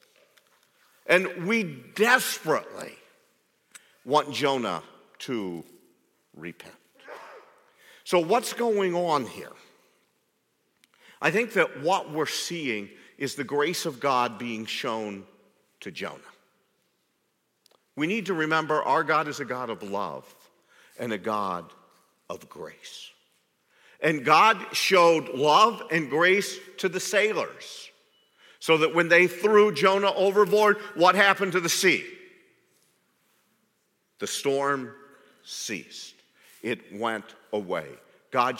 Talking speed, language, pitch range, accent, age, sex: 110 wpm, English, 165-220 Hz, American, 50-69, male